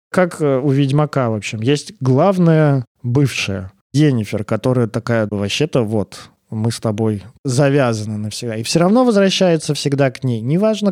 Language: Russian